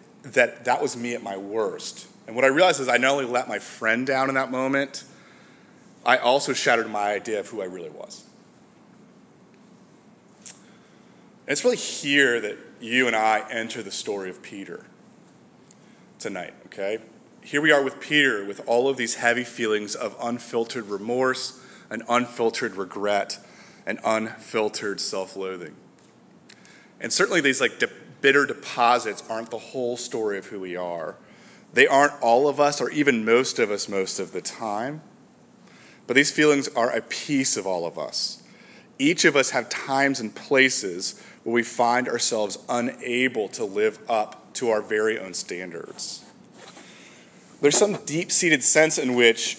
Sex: male